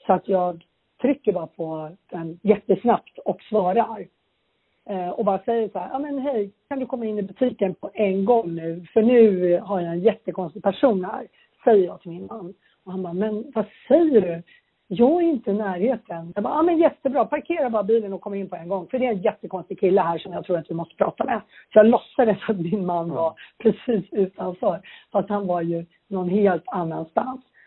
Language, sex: Swedish, female